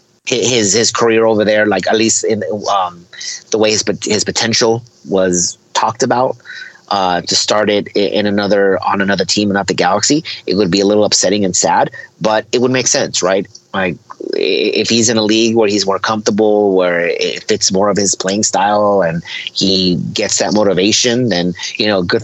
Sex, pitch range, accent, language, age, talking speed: male, 100-125 Hz, American, English, 30-49, 195 wpm